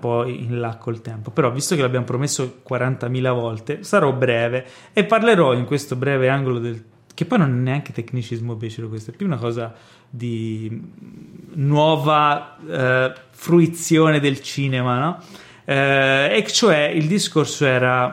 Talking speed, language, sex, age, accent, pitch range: 150 wpm, Italian, male, 30-49, native, 120-150 Hz